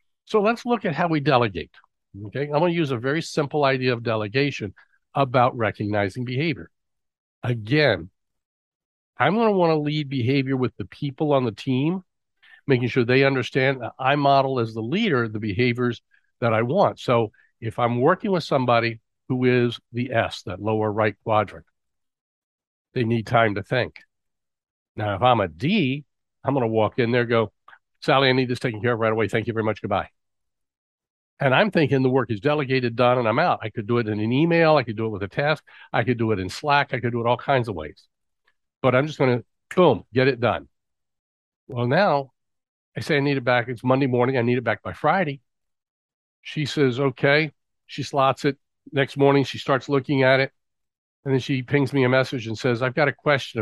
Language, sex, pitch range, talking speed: English, male, 110-140 Hz, 210 wpm